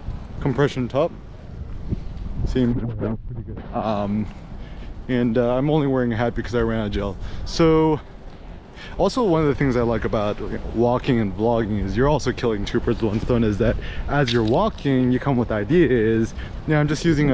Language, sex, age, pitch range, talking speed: English, male, 20-39, 115-140 Hz, 175 wpm